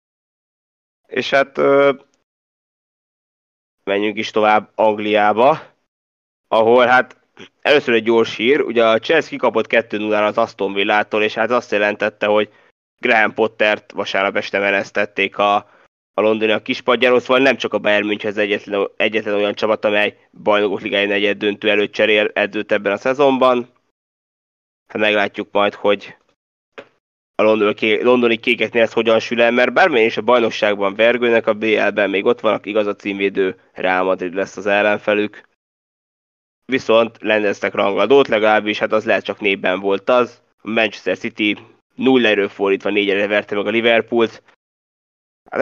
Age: 20-39